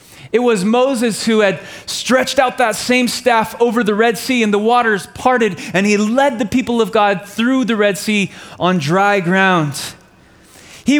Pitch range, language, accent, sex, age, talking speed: 165-230 Hz, English, American, male, 20-39, 180 wpm